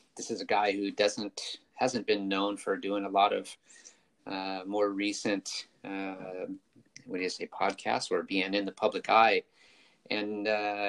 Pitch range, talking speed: 100-115 Hz, 165 wpm